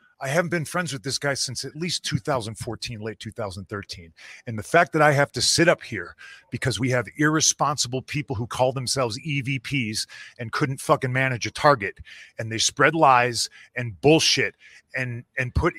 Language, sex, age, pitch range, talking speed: English, male, 40-59, 120-155 Hz, 180 wpm